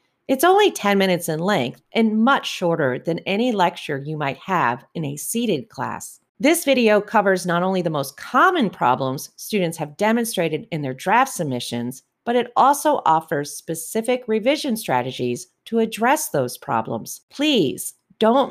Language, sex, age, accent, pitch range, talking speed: English, female, 40-59, American, 150-230 Hz, 155 wpm